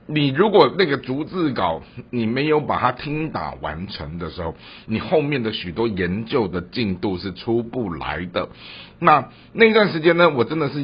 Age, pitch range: 50-69, 95-150 Hz